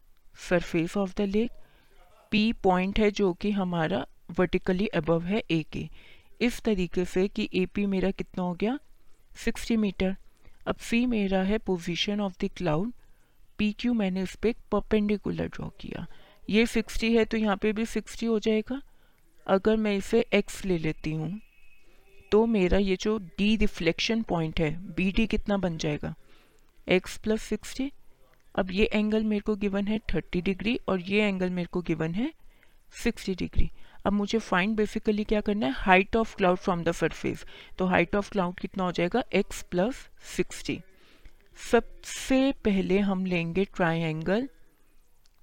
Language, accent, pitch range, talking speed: Hindi, native, 180-220 Hz, 155 wpm